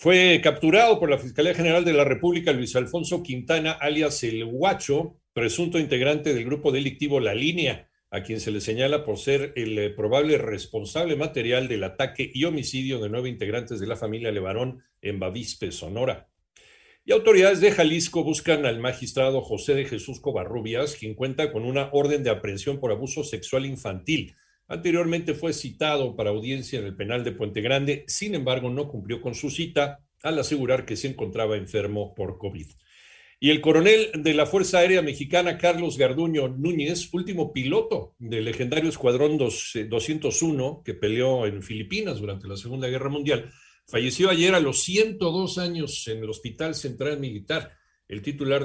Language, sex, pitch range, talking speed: Spanish, male, 120-165 Hz, 170 wpm